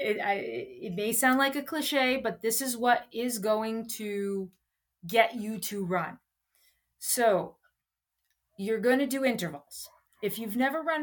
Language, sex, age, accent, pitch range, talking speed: English, female, 30-49, American, 215-275 Hz, 160 wpm